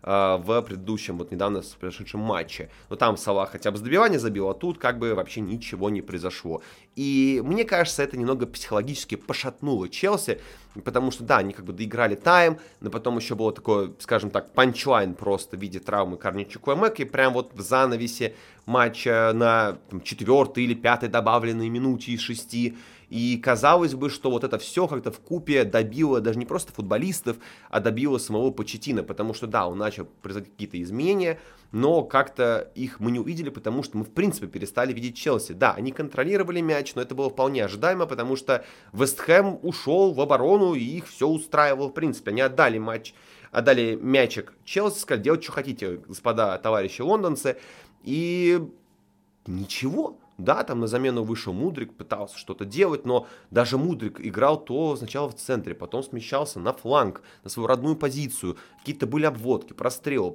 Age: 20-39